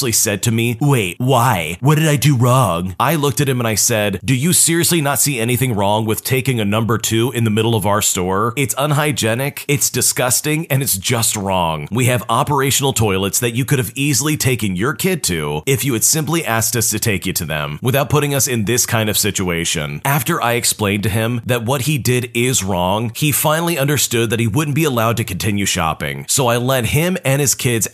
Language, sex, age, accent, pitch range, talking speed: English, male, 30-49, American, 105-140 Hz, 225 wpm